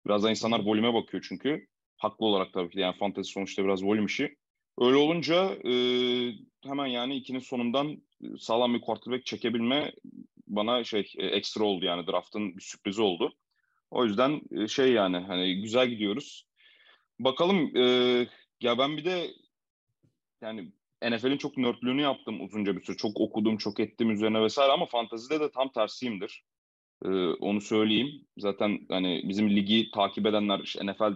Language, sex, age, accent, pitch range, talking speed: Turkish, male, 30-49, native, 100-125 Hz, 155 wpm